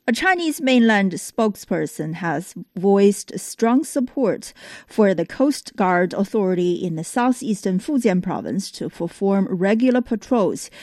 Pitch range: 185-245 Hz